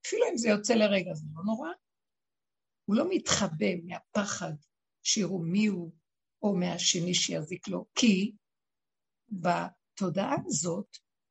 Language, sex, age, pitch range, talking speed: Hebrew, female, 60-79, 190-245 Hz, 115 wpm